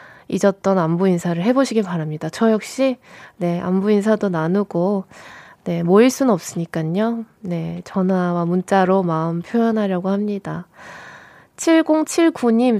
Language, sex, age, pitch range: Korean, female, 20-39, 185-260 Hz